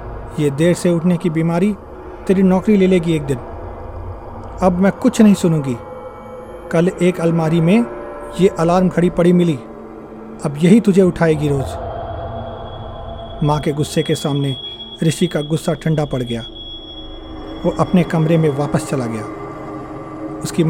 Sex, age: male, 40-59